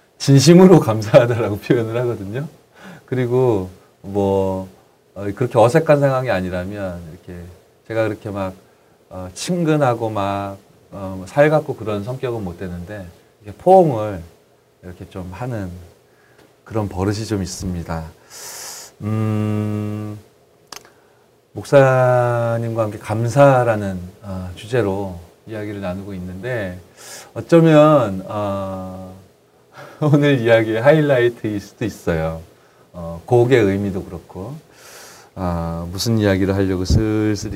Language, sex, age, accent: Korean, male, 30-49, native